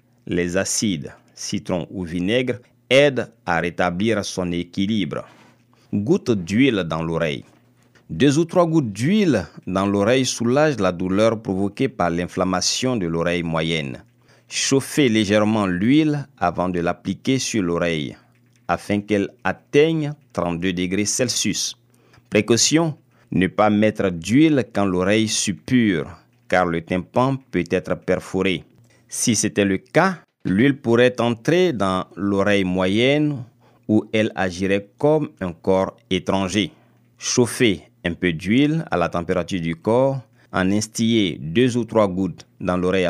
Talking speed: 130 wpm